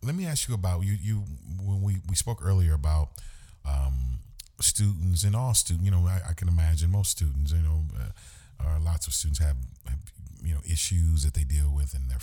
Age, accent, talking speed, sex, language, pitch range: 40-59, American, 215 wpm, male, English, 70-90 Hz